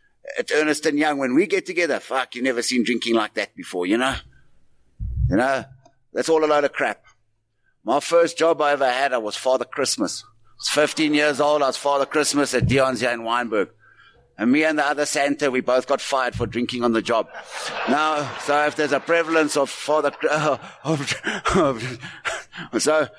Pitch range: 130-155 Hz